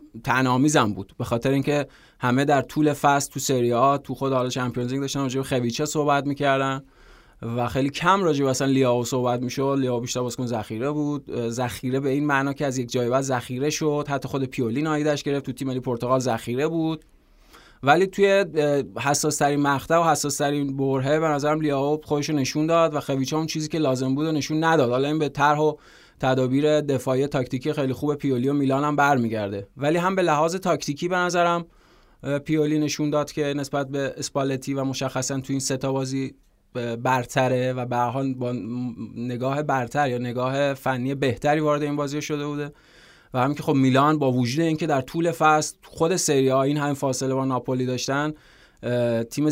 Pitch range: 130-150 Hz